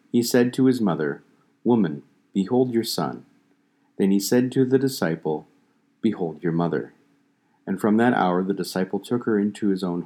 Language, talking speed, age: English, 175 wpm, 40-59